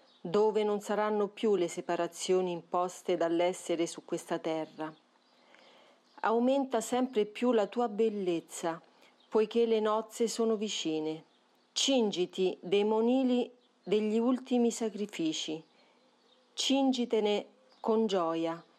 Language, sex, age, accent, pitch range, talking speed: Italian, female, 40-59, native, 185-230 Hz, 100 wpm